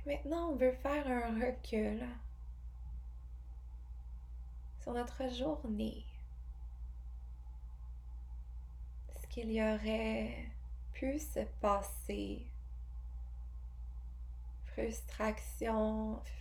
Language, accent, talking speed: English, Canadian, 60 wpm